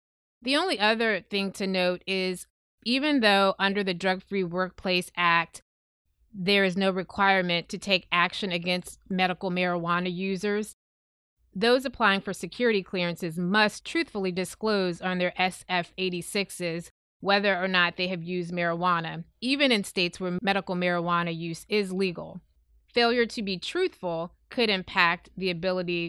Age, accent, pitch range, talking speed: 20-39, American, 175-200 Hz, 140 wpm